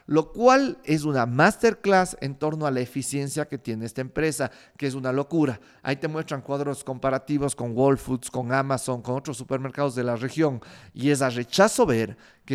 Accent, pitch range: Mexican, 135-180 Hz